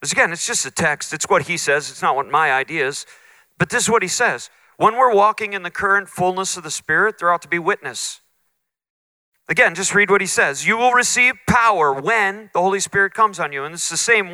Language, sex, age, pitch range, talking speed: English, male, 40-59, 185-220 Hz, 245 wpm